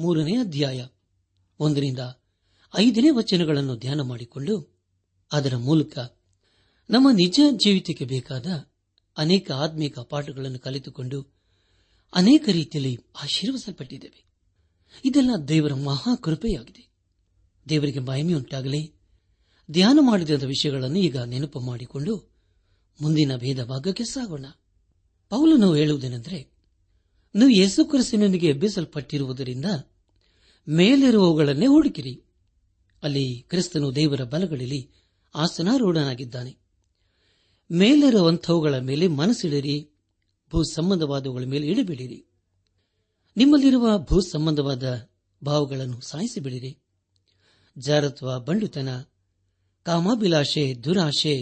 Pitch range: 105-175 Hz